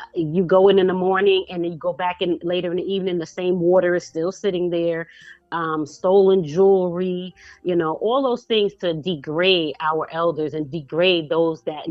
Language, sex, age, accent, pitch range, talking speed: English, female, 30-49, American, 160-190 Hz, 195 wpm